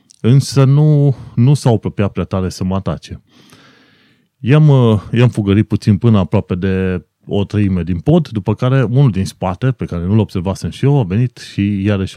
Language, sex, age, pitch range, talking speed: Romanian, male, 30-49, 100-130 Hz, 180 wpm